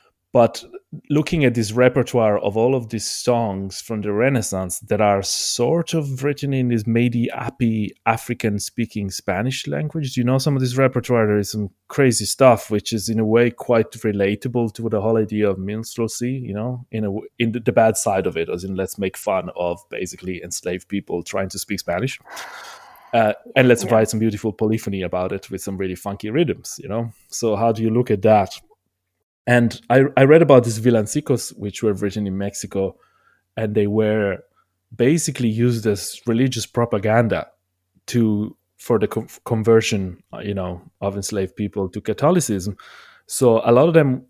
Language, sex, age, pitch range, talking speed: English, male, 30-49, 100-125 Hz, 180 wpm